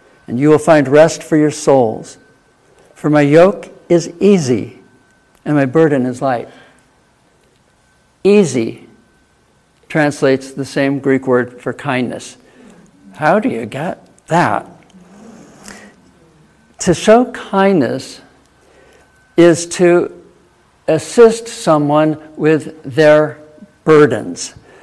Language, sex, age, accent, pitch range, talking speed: English, male, 60-79, American, 135-170 Hz, 100 wpm